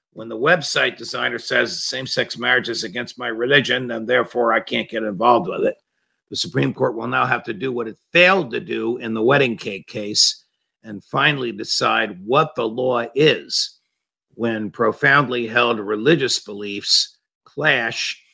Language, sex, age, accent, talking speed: English, male, 50-69, American, 165 wpm